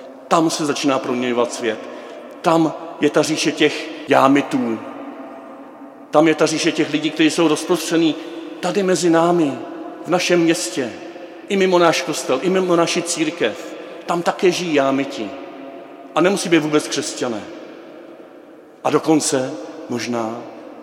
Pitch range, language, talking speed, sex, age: 130-165 Hz, Czech, 135 wpm, male, 50-69